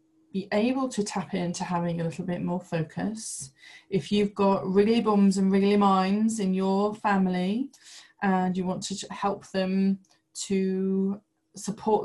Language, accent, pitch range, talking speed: English, British, 180-205 Hz, 150 wpm